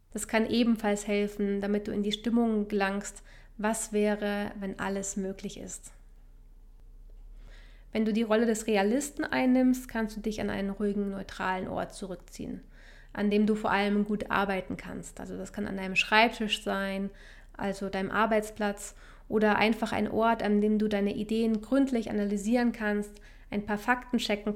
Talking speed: 160 wpm